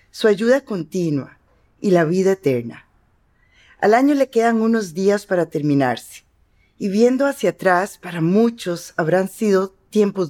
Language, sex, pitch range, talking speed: Spanish, female, 160-220 Hz, 140 wpm